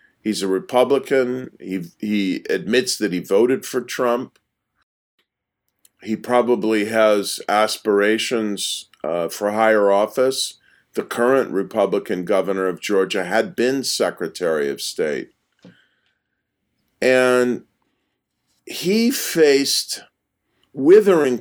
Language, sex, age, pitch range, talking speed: English, male, 50-69, 105-130 Hz, 95 wpm